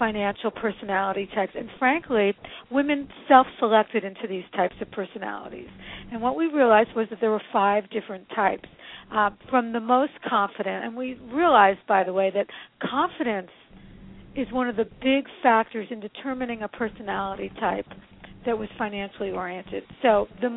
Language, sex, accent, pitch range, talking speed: English, female, American, 210-255 Hz, 155 wpm